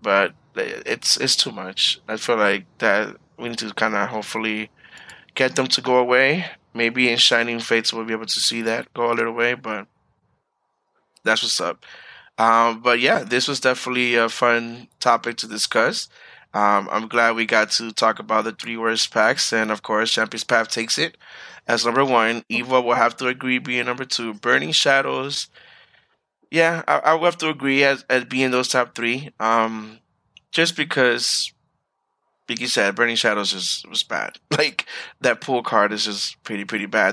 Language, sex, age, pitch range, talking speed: English, male, 20-39, 110-130 Hz, 185 wpm